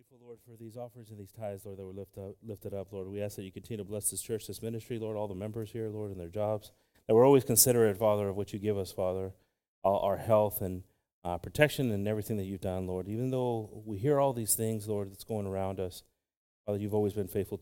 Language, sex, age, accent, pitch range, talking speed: English, male, 30-49, American, 95-115 Hz, 255 wpm